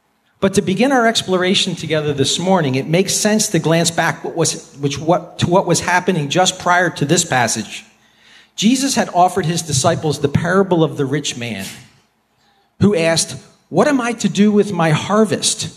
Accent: American